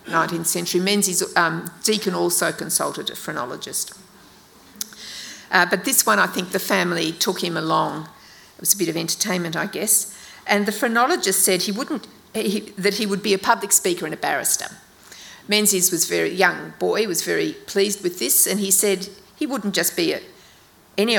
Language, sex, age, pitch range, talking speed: English, female, 50-69, 180-210 Hz, 185 wpm